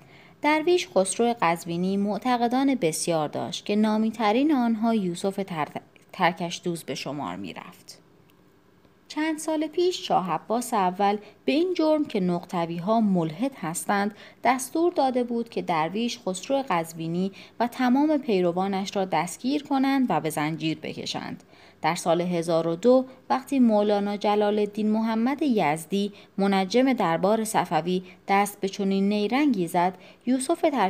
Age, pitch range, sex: 30-49, 175-245 Hz, female